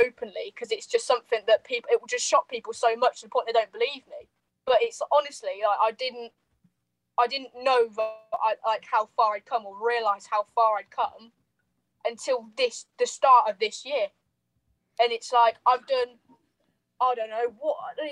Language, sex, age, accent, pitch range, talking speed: English, female, 10-29, British, 220-275 Hz, 195 wpm